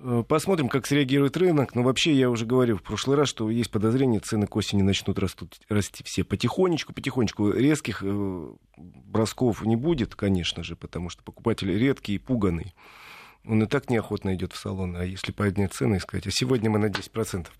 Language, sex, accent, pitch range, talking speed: Russian, male, native, 100-130 Hz, 190 wpm